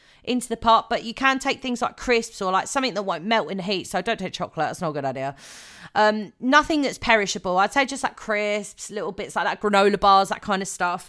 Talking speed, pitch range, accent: 255 wpm, 175-230 Hz, British